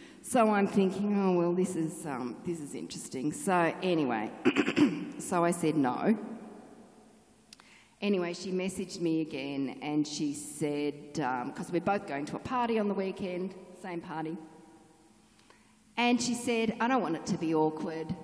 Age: 40-59